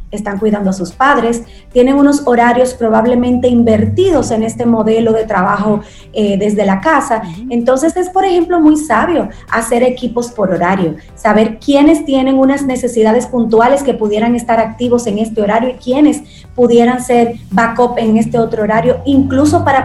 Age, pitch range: 30-49, 215-270 Hz